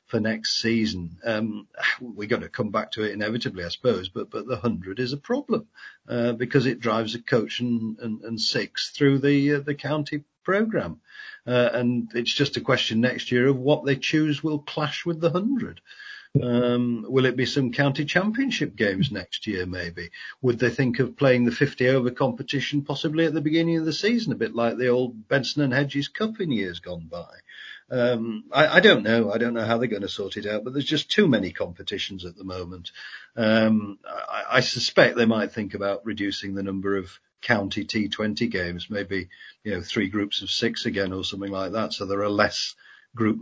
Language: English